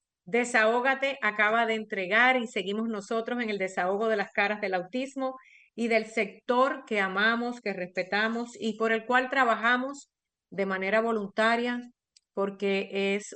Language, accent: Spanish, American